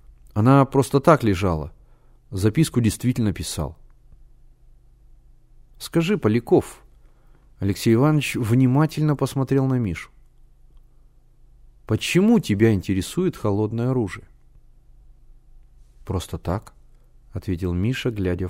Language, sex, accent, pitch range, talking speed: Russian, male, native, 120-145 Hz, 80 wpm